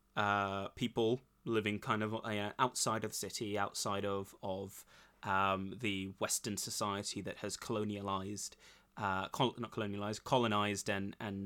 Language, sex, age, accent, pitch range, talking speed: English, male, 20-39, British, 100-115 Hz, 135 wpm